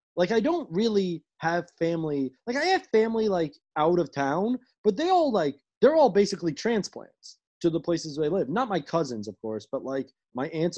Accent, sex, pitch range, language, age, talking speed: American, male, 135-190 Hz, English, 20-39, 200 wpm